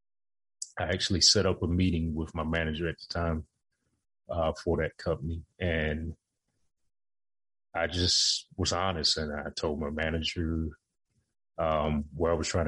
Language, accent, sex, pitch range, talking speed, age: English, American, male, 80-100 Hz, 145 wpm, 30-49